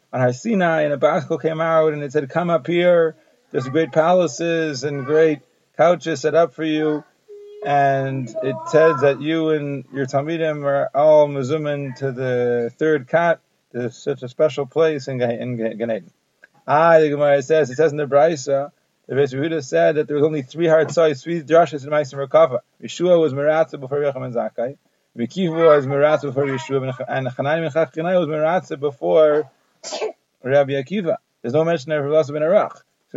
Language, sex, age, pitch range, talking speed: English, male, 30-49, 140-165 Hz, 185 wpm